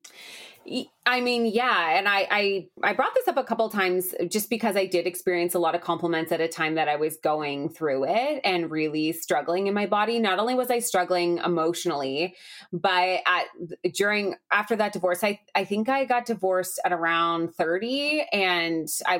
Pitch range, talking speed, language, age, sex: 170-210 Hz, 190 wpm, English, 20-39, female